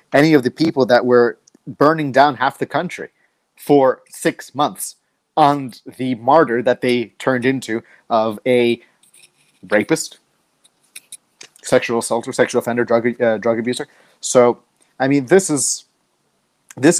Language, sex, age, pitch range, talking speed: English, male, 30-49, 115-135 Hz, 135 wpm